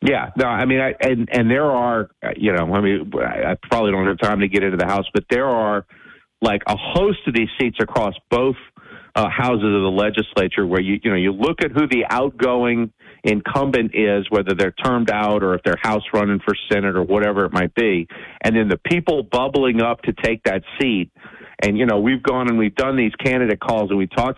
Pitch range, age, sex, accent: 105-130 Hz, 50-69, male, American